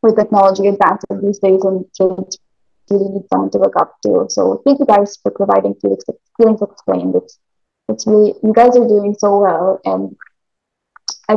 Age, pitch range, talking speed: 20-39, 190-225 Hz, 175 wpm